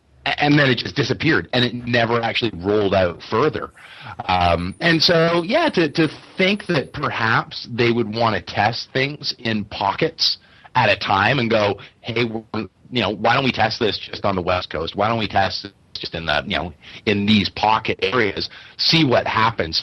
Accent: American